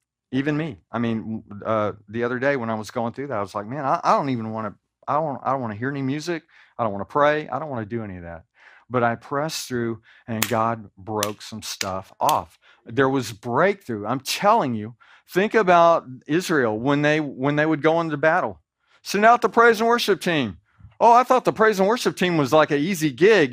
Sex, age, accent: male, 50-69, American